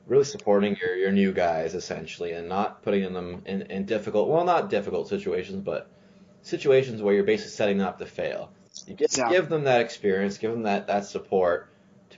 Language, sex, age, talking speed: English, male, 20-39, 190 wpm